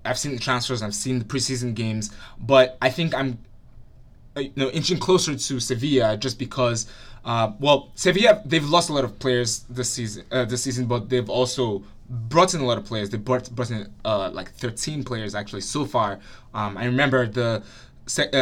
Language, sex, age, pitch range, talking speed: English, male, 20-39, 110-130 Hz, 195 wpm